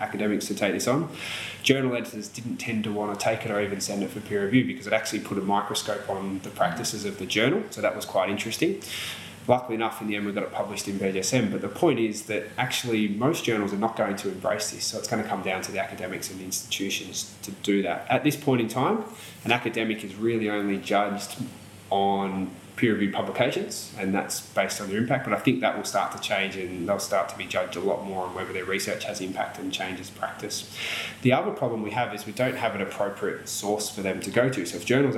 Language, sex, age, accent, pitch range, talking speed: English, male, 20-39, Australian, 100-115 Hz, 245 wpm